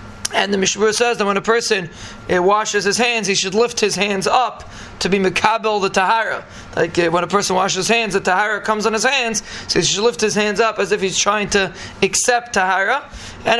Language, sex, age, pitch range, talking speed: English, male, 20-39, 185-220 Hz, 230 wpm